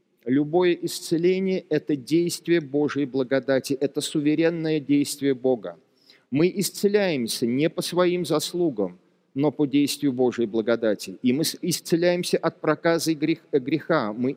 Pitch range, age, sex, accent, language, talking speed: 140-180 Hz, 40-59, male, native, Russian, 120 wpm